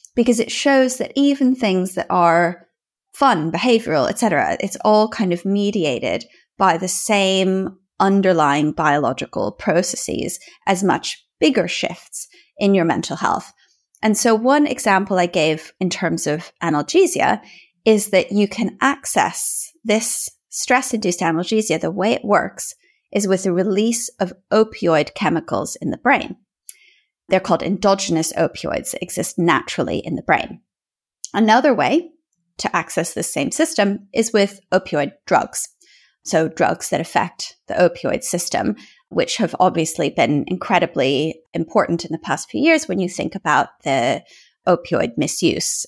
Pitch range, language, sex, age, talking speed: 180-260 Hz, English, female, 20-39, 140 wpm